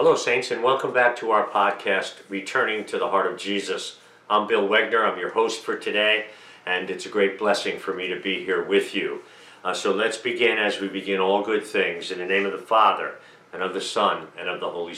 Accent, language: American, English